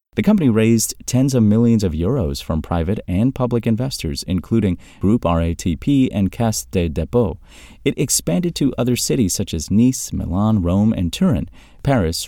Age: 30-49